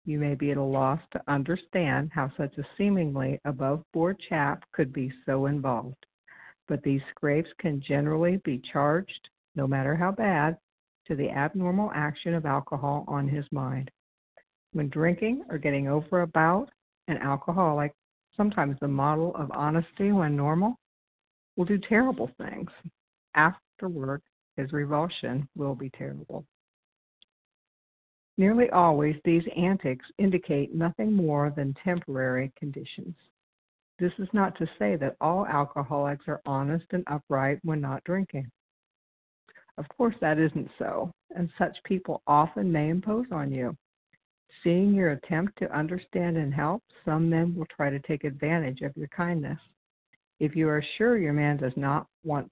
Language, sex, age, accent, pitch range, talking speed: English, female, 60-79, American, 140-175 Hz, 145 wpm